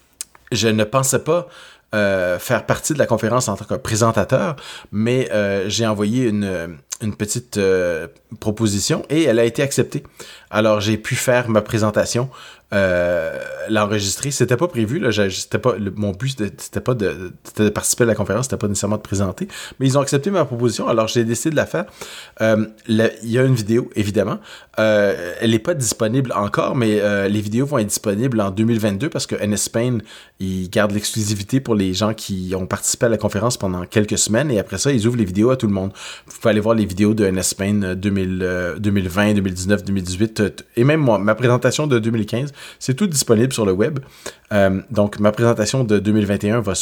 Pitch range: 100-120 Hz